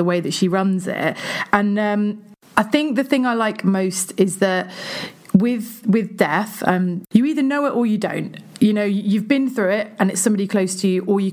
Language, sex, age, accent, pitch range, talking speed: English, female, 30-49, British, 190-225 Hz, 225 wpm